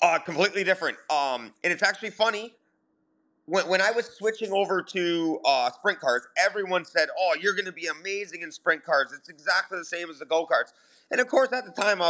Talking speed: 215 wpm